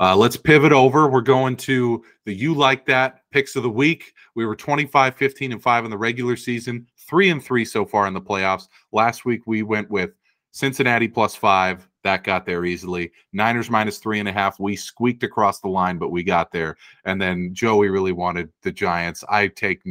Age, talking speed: 30-49, 210 wpm